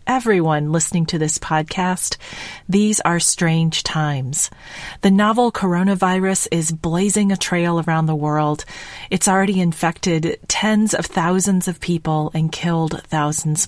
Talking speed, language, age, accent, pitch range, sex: 130 wpm, English, 40-59, American, 155-190 Hz, female